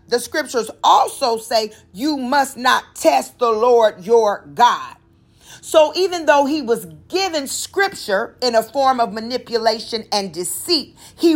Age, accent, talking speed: 40-59, American, 145 wpm